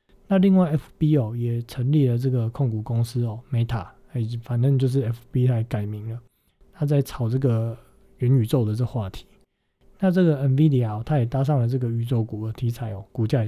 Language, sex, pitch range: Chinese, male, 115-145 Hz